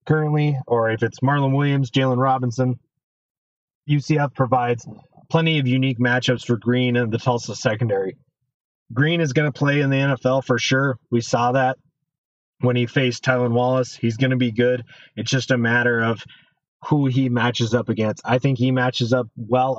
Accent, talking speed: American, 180 wpm